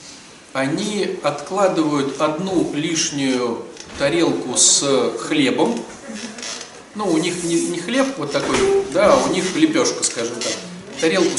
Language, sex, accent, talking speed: Russian, male, native, 115 wpm